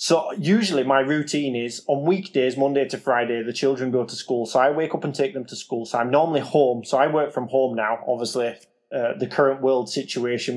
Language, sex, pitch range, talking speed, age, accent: English, male, 125-145 Hz, 225 wpm, 20-39, British